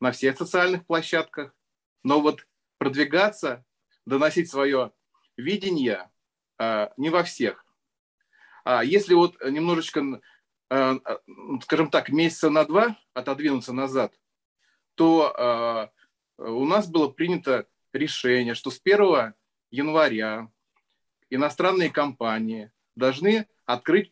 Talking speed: 95 wpm